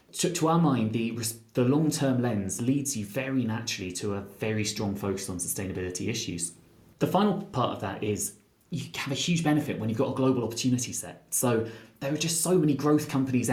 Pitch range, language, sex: 110-140 Hz, English, male